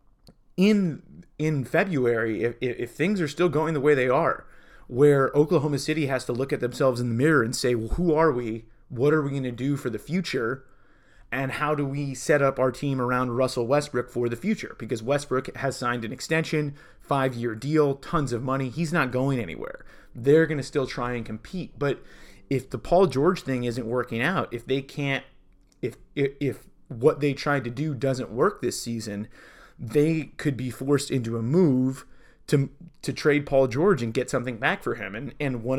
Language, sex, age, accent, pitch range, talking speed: English, male, 30-49, American, 120-145 Hz, 205 wpm